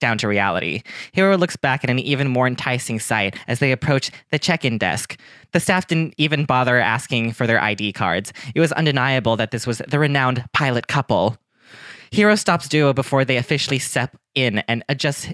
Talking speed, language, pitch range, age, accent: 190 wpm, English, 115-150 Hz, 20-39, American